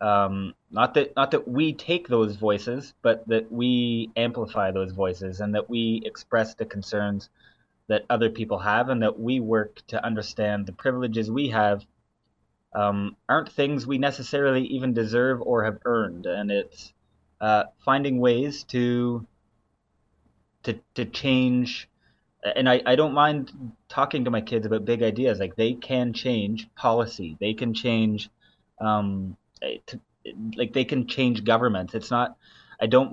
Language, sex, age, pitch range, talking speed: English, male, 20-39, 105-125 Hz, 150 wpm